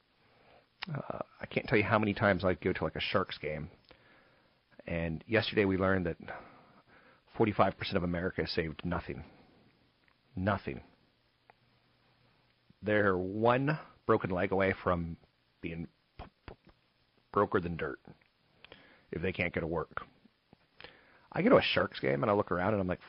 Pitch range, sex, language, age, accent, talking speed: 90-115 Hz, male, English, 40-59, American, 150 wpm